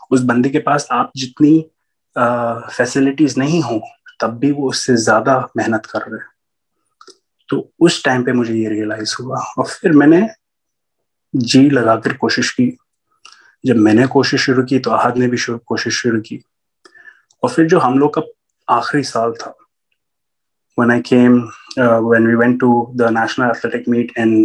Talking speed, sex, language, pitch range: 150 wpm, male, Urdu, 115-150 Hz